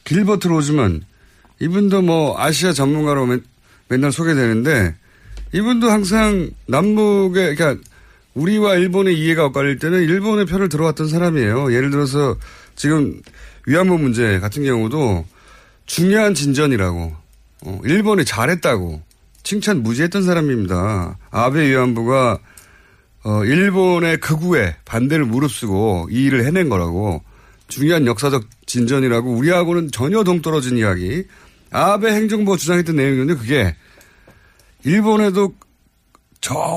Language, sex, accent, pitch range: Korean, male, native, 115-180 Hz